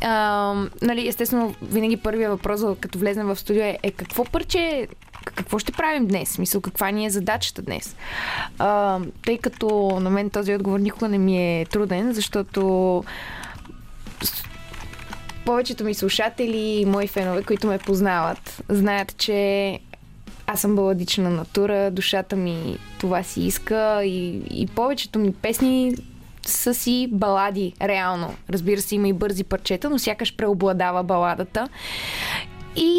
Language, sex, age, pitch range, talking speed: Bulgarian, female, 20-39, 195-230 Hz, 135 wpm